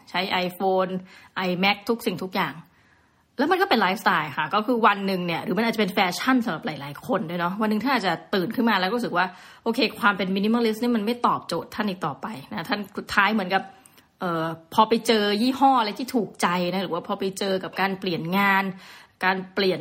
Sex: female